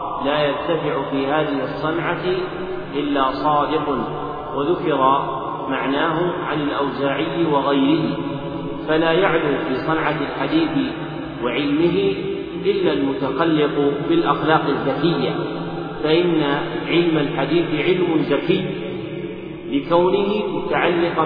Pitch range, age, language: 145-170 Hz, 40-59, Arabic